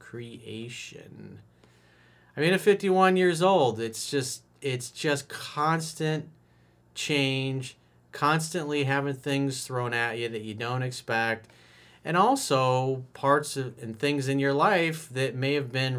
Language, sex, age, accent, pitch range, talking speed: English, male, 40-59, American, 115-145 Hz, 130 wpm